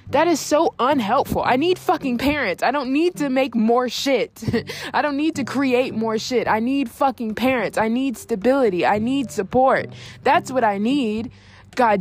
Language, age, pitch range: English, 20-39, 205-265 Hz